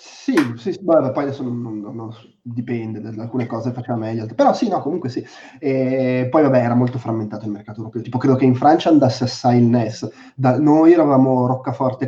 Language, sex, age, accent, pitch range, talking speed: Italian, male, 20-39, native, 115-135 Hz, 205 wpm